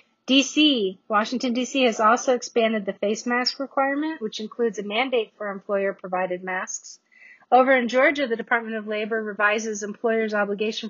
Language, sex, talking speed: English, female, 150 wpm